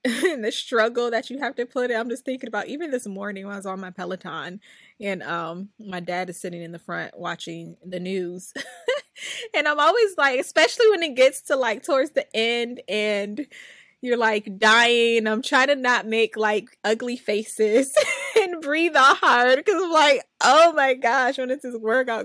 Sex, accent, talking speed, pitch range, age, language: female, American, 195 wpm, 200-270 Hz, 20-39, English